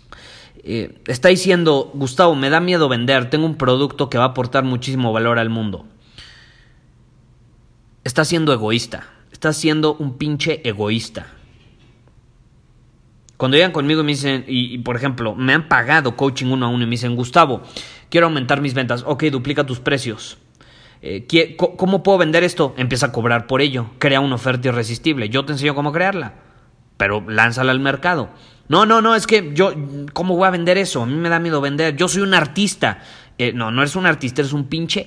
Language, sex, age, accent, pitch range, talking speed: Spanish, male, 30-49, Mexican, 125-160 Hz, 185 wpm